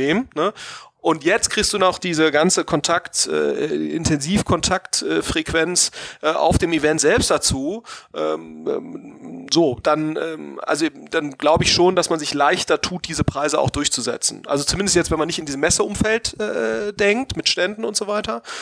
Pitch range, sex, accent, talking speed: 140-180 Hz, male, German, 170 wpm